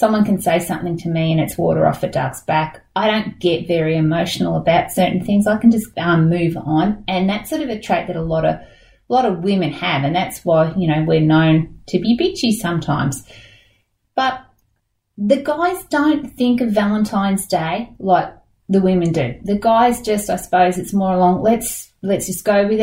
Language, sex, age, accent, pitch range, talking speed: English, female, 30-49, Australian, 170-220 Hz, 200 wpm